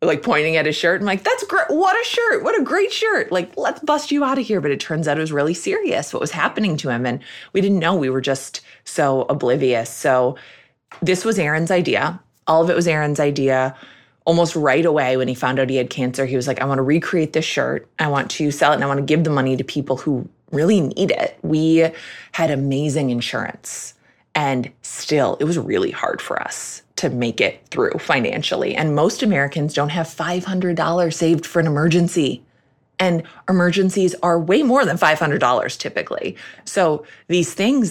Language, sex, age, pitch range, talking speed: English, female, 20-39, 135-180 Hz, 205 wpm